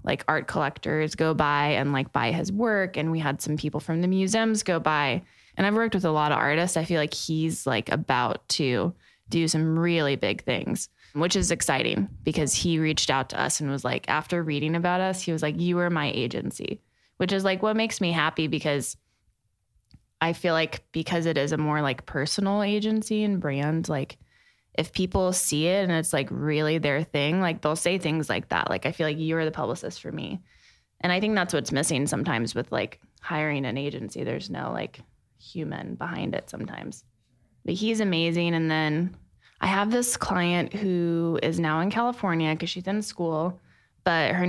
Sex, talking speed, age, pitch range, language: female, 200 wpm, 20-39, 150-180 Hz, English